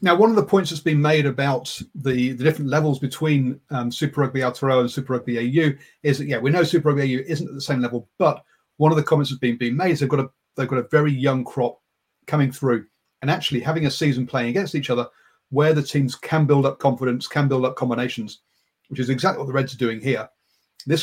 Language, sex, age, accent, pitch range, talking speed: English, male, 40-59, British, 125-155 Hz, 245 wpm